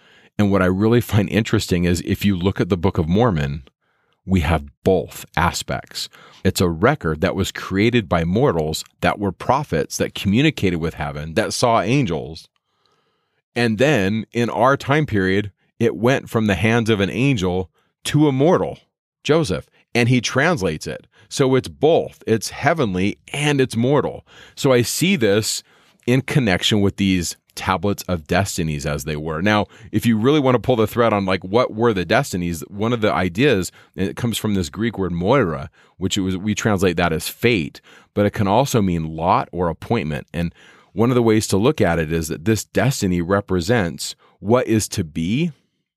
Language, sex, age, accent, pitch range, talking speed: English, male, 30-49, American, 90-120 Hz, 185 wpm